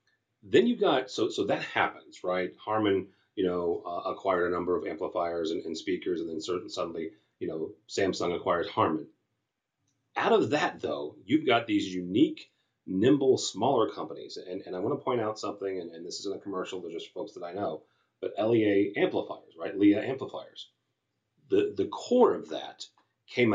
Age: 30-49